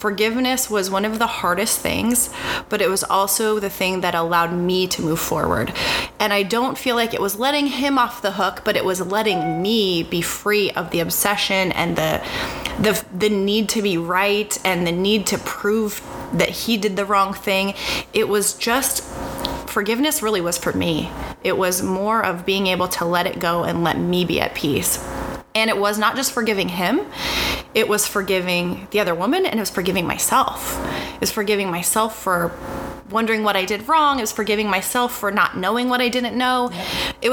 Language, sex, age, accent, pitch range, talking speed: English, female, 30-49, American, 190-245 Hz, 200 wpm